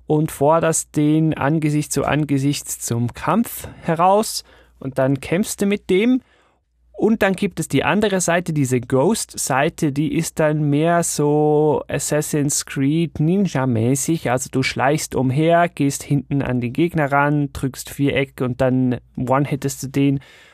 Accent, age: German, 30-49